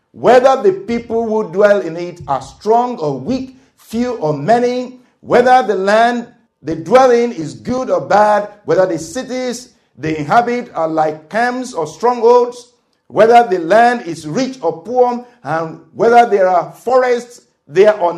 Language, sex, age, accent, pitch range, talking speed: English, male, 50-69, Nigerian, 145-240 Hz, 160 wpm